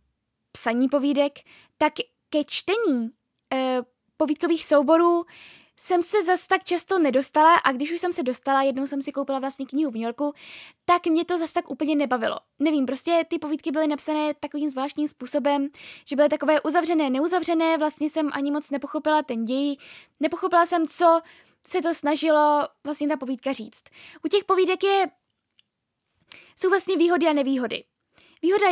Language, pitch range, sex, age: Czech, 270-320 Hz, female, 10-29